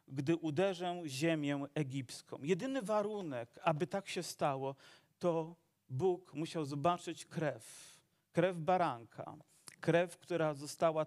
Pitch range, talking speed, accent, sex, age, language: 150-180 Hz, 110 wpm, native, male, 40-59, Polish